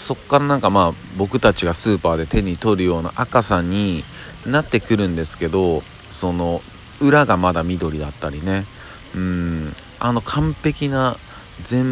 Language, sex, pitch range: Japanese, male, 80-110 Hz